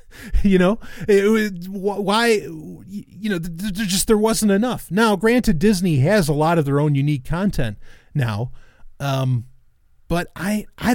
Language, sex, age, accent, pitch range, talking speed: English, male, 30-49, American, 130-175 Hz, 170 wpm